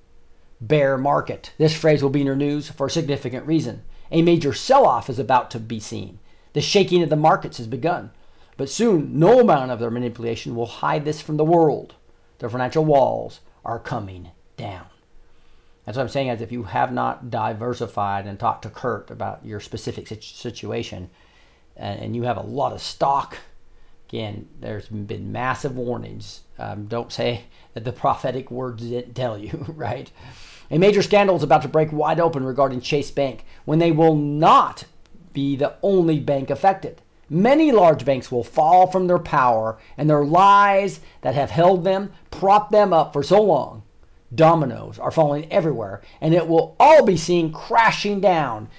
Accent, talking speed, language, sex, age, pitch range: American, 175 wpm, English, male, 40-59, 115-160 Hz